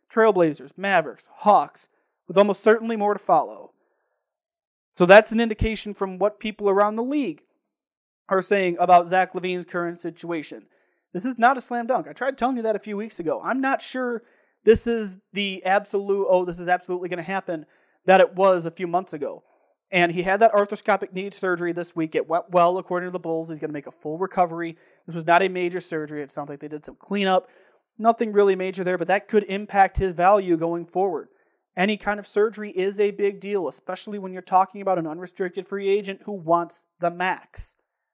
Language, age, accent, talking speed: English, 30-49, American, 205 wpm